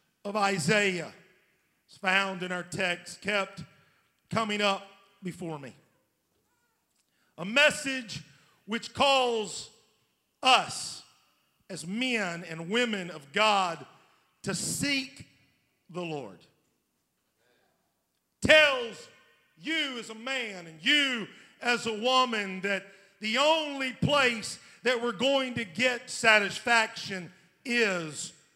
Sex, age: male, 50-69